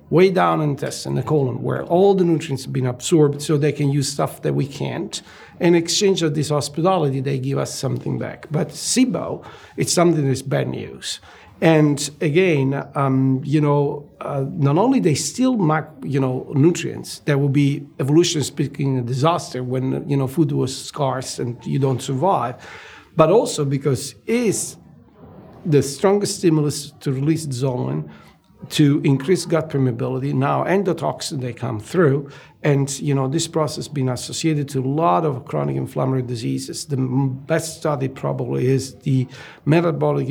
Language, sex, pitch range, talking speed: English, male, 130-160 Hz, 165 wpm